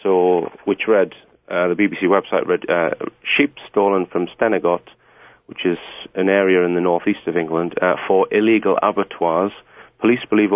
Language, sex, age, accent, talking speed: English, male, 40-59, British, 160 wpm